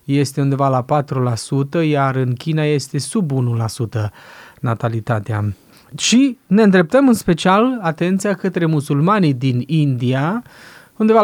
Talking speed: 120 wpm